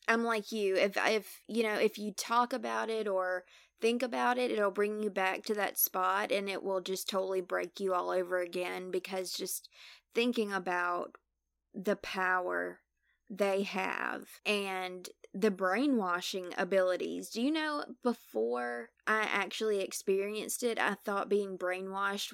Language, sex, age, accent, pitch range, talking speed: English, female, 20-39, American, 185-210 Hz, 155 wpm